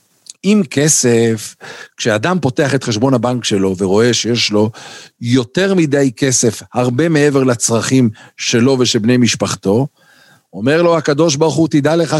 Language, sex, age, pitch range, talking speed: Hebrew, male, 50-69, 135-180 Hz, 135 wpm